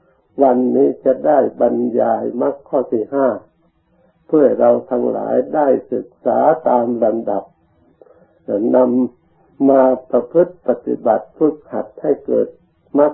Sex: male